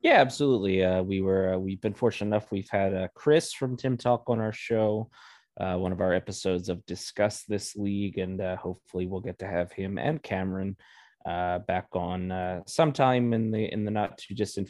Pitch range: 95-110 Hz